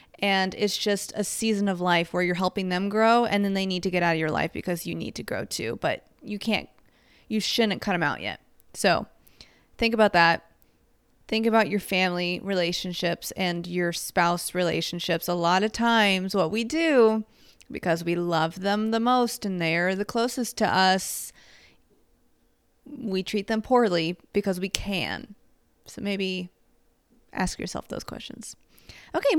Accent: American